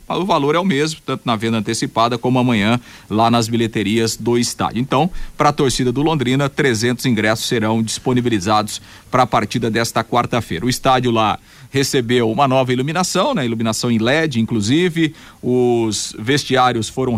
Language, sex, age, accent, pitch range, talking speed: Portuguese, male, 40-59, Brazilian, 115-145 Hz, 160 wpm